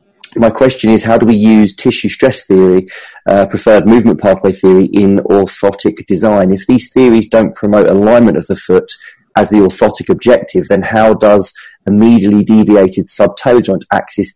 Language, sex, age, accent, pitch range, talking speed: English, male, 30-49, British, 95-110 Hz, 165 wpm